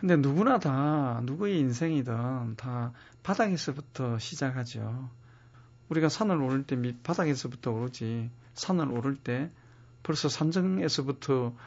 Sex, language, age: male, Korean, 40-59